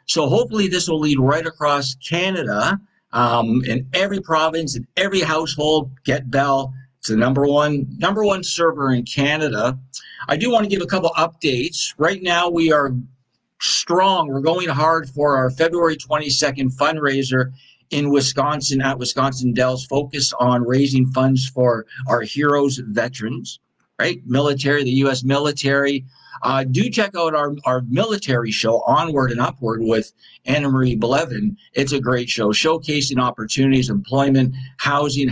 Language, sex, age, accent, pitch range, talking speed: English, male, 50-69, American, 125-150 Hz, 145 wpm